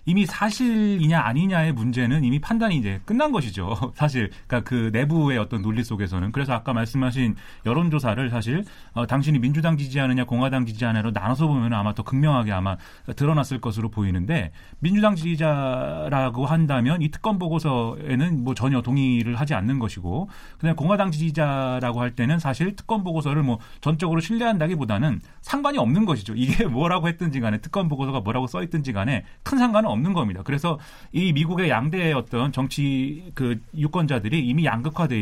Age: 30-49